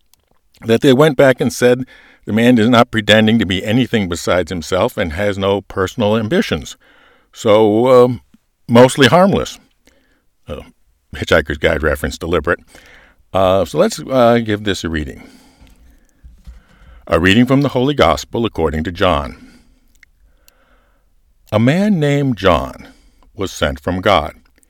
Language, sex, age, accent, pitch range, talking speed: English, male, 60-79, American, 80-130 Hz, 135 wpm